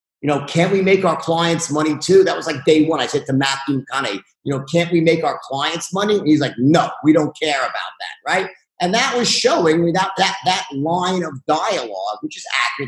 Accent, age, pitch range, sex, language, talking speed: American, 50-69, 150-195 Hz, male, English, 235 wpm